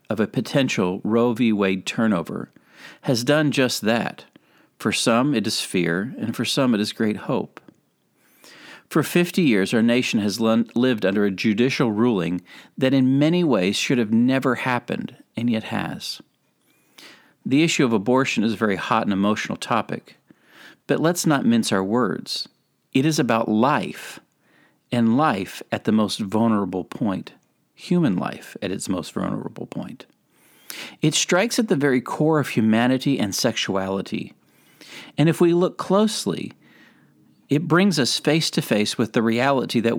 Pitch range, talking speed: 110-145 Hz, 160 wpm